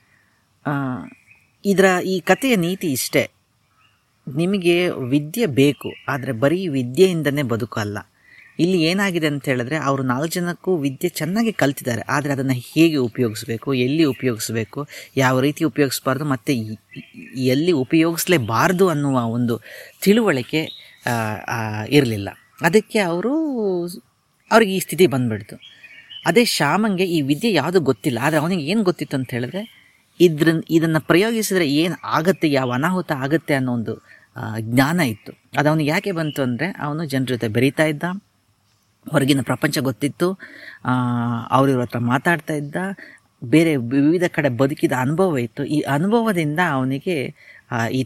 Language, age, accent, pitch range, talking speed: Kannada, 30-49, native, 125-165 Hz, 115 wpm